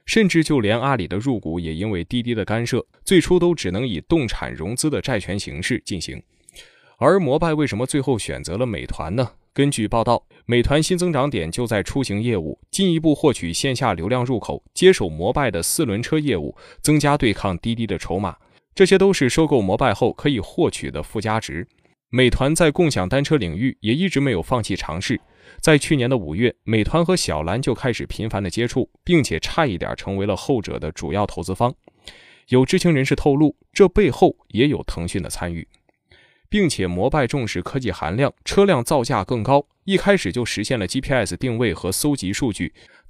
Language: Chinese